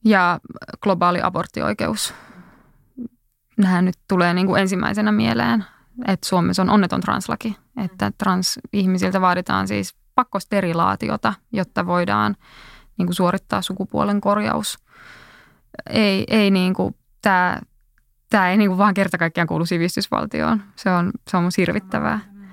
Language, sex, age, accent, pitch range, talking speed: Finnish, female, 20-39, native, 180-200 Hz, 115 wpm